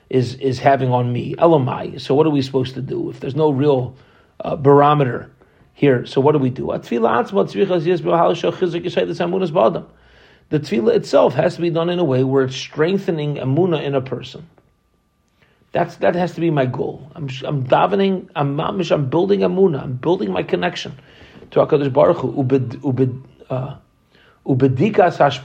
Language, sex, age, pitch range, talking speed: English, male, 40-59, 130-170 Hz, 150 wpm